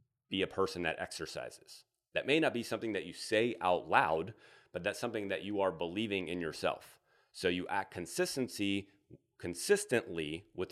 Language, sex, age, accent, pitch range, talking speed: English, male, 30-49, American, 85-130 Hz, 170 wpm